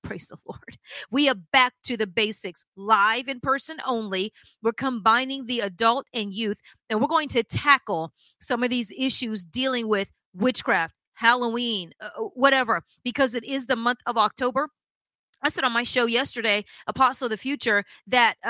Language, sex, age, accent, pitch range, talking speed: English, female, 30-49, American, 215-270 Hz, 170 wpm